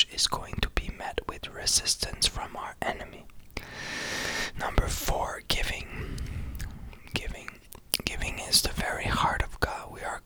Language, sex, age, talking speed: English, male, 20-39, 135 wpm